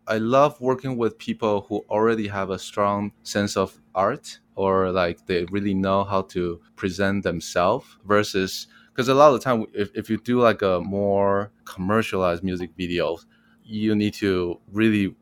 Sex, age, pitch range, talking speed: male, 20-39, 95-110 Hz, 170 wpm